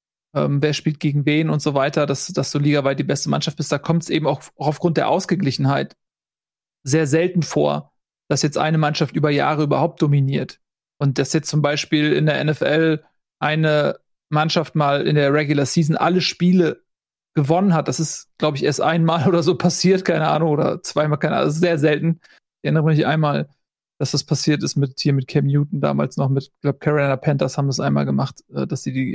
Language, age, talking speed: German, 40-59, 205 wpm